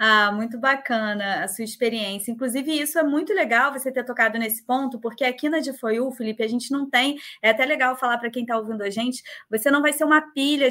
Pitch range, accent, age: 230-285 Hz, Brazilian, 20-39